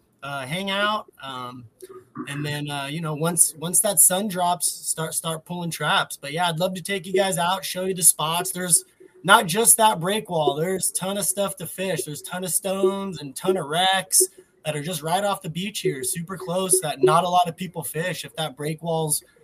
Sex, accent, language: male, American, English